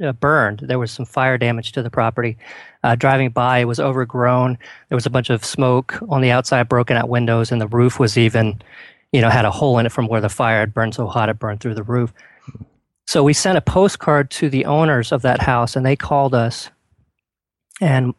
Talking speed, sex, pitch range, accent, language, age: 230 wpm, male, 120-145 Hz, American, English, 40-59